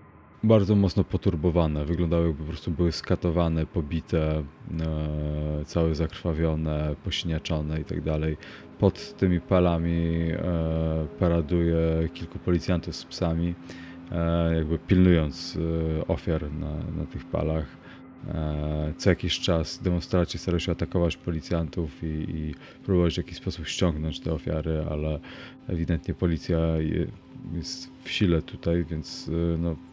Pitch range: 80-95 Hz